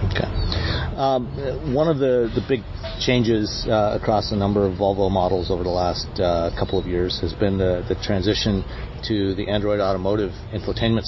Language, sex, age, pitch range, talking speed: English, male, 40-59, 95-115 Hz, 175 wpm